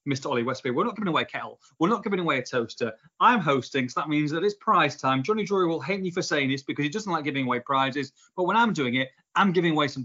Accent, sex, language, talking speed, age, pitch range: British, male, English, 285 wpm, 30-49, 125-185 Hz